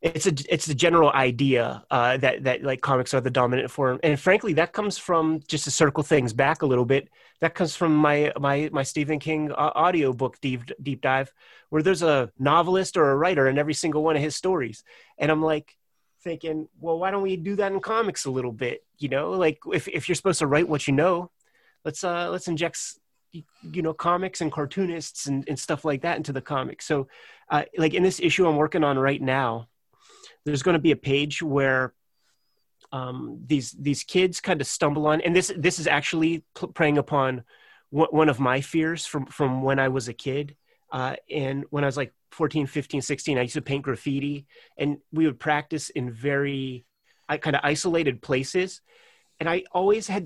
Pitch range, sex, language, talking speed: 140-170 Hz, male, English, 210 wpm